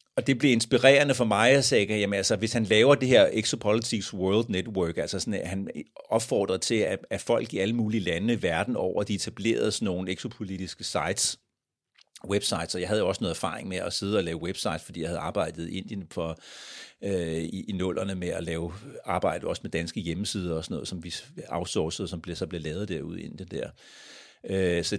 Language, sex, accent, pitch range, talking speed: Danish, male, native, 95-120 Hz, 210 wpm